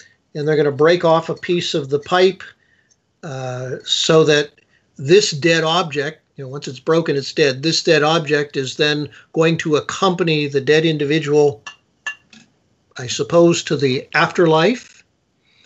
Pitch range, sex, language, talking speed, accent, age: 145-165 Hz, male, English, 155 wpm, American, 50-69